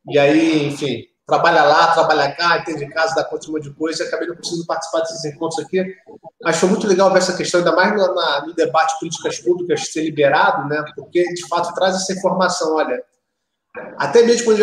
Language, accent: Portuguese, Brazilian